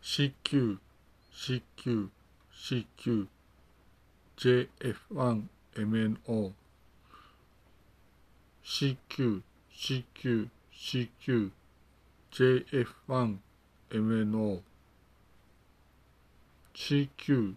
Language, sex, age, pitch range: Japanese, male, 60-79, 95-125 Hz